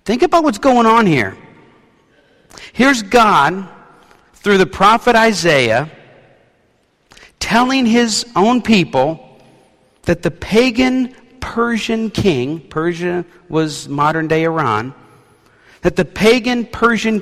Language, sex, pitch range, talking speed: English, male, 130-205 Hz, 100 wpm